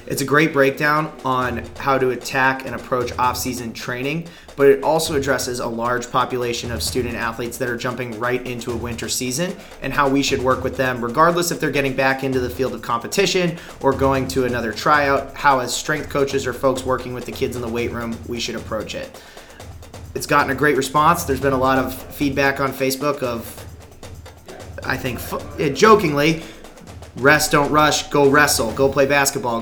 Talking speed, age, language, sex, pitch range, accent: 190 wpm, 30-49, English, male, 120-145 Hz, American